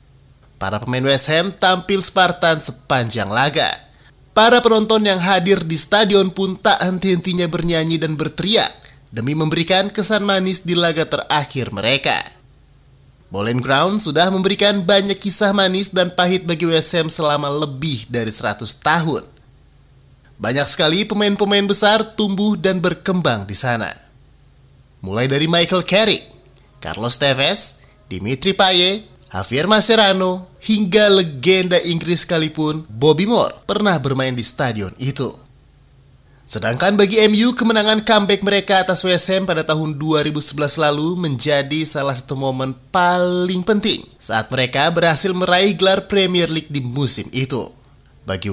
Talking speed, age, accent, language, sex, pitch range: 130 wpm, 30-49, native, Indonesian, male, 135-190 Hz